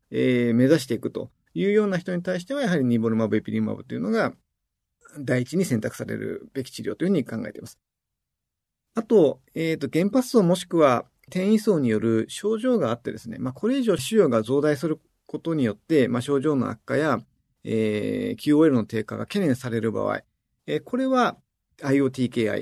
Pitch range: 115-185 Hz